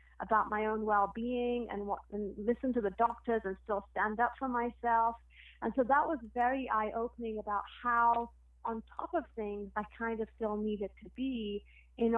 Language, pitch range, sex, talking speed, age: English, 205-235 Hz, female, 180 wpm, 30-49